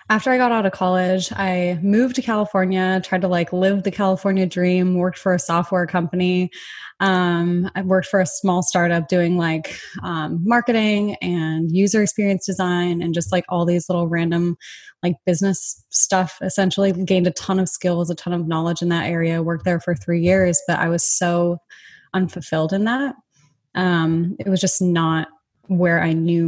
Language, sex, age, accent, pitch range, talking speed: English, female, 20-39, American, 170-190 Hz, 180 wpm